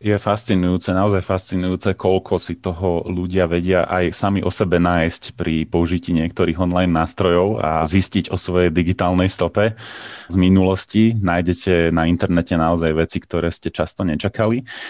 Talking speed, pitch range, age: 145 wpm, 85-100 Hz, 30-49